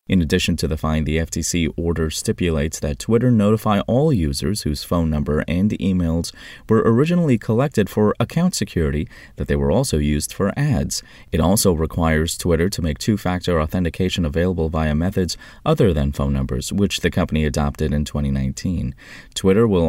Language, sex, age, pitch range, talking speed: English, male, 30-49, 80-120 Hz, 165 wpm